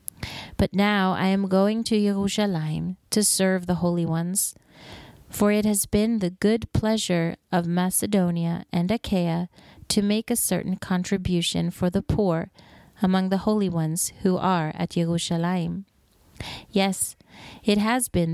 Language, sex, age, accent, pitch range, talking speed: English, female, 30-49, American, 175-205 Hz, 140 wpm